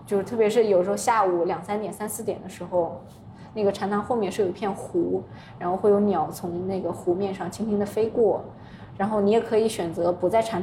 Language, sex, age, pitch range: Chinese, female, 20-39, 180-215 Hz